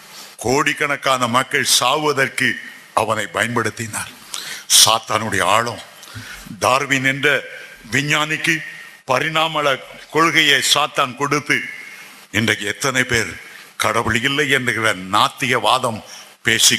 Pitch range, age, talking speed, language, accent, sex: 115-140 Hz, 60-79, 80 wpm, Tamil, native, male